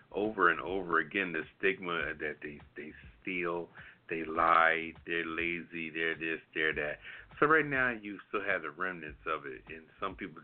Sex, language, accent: male, English, American